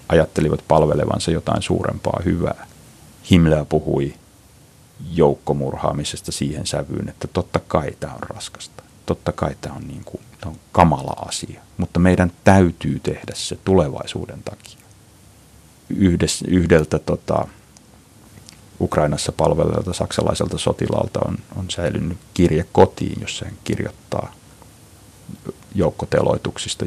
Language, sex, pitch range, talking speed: Finnish, male, 80-105 Hz, 100 wpm